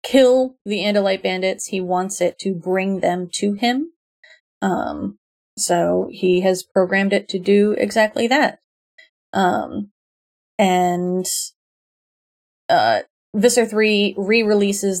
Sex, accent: female, American